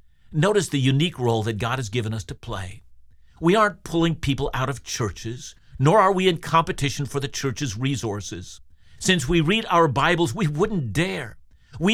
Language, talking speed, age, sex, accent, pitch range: English, 180 wpm, 50-69, male, American, 115-170 Hz